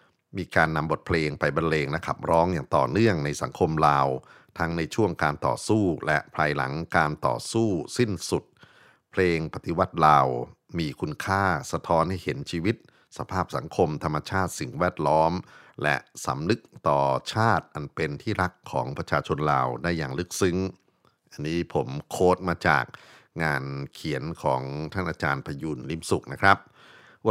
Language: Thai